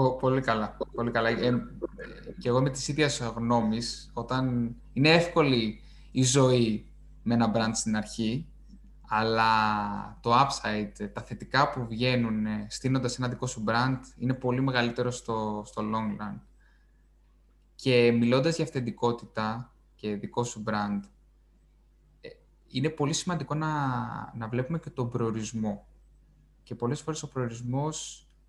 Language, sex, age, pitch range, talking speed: Greek, male, 20-39, 110-145 Hz, 130 wpm